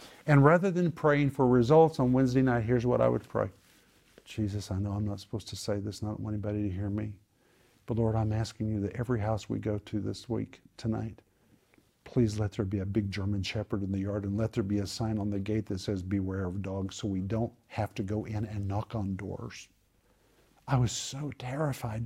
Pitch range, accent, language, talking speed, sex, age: 100-125 Hz, American, English, 230 wpm, male, 50-69